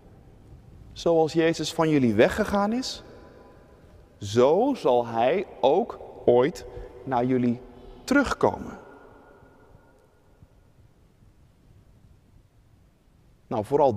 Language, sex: Dutch, male